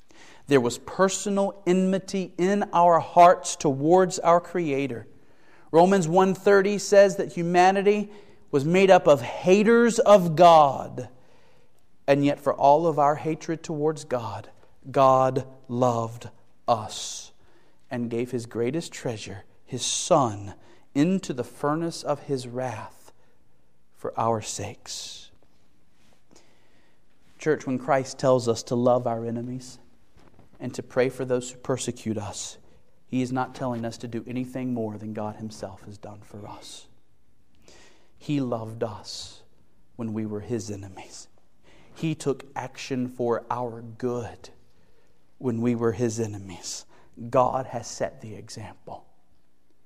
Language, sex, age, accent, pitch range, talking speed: English, male, 40-59, American, 115-155 Hz, 130 wpm